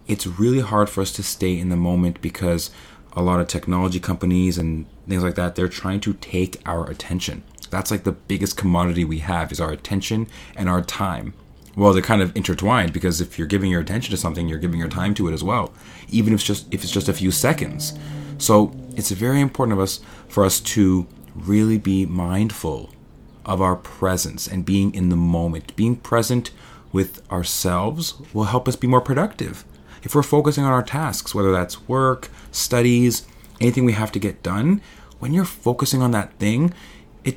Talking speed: 200 wpm